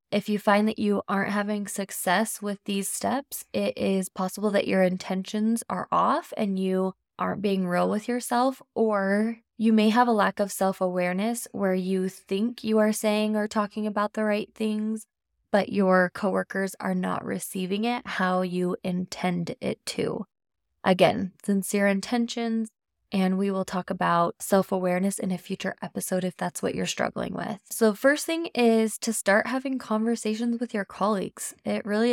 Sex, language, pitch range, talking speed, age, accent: female, English, 185-220 Hz, 170 wpm, 20-39, American